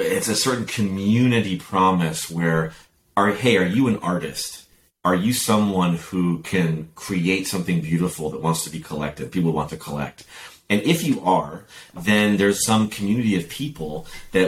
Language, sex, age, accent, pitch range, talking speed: English, male, 30-49, American, 80-95 Hz, 165 wpm